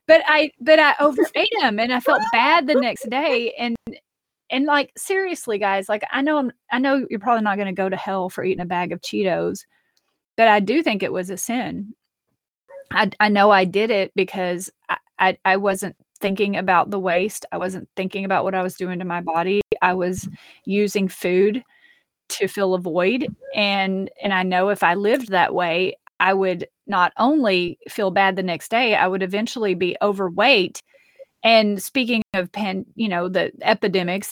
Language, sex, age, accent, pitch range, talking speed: English, female, 30-49, American, 195-250 Hz, 190 wpm